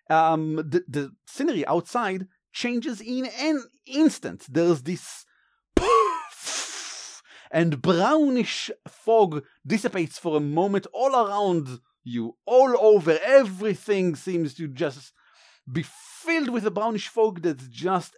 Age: 40-59